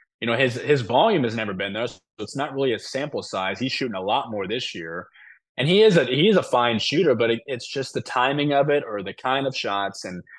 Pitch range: 105-125 Hz